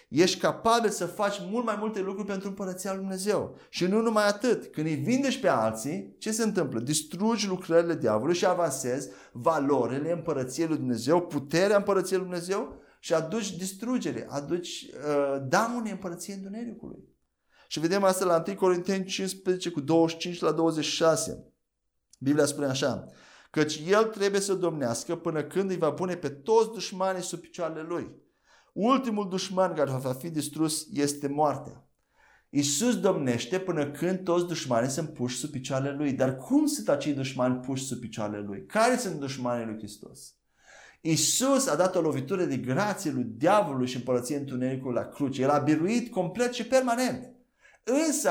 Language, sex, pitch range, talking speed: Romanian, male, 140-200 Hz, 160 wpm